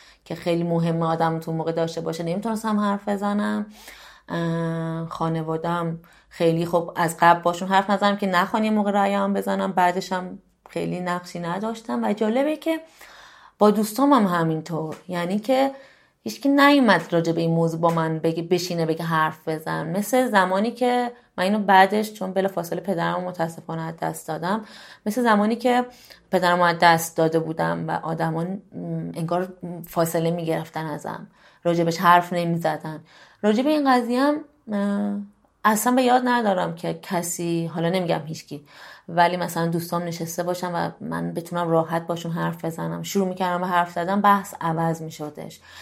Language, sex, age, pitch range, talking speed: Persian, female, 20-39, 165-205 Hz, 150 wpm